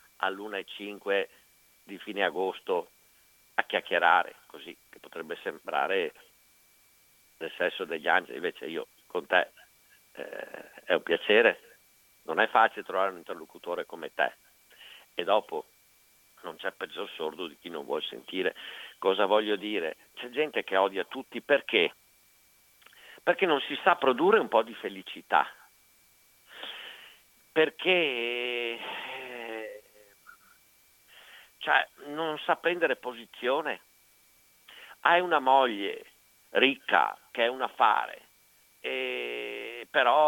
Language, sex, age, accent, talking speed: Italian, male, 50-69, native, 115 wpm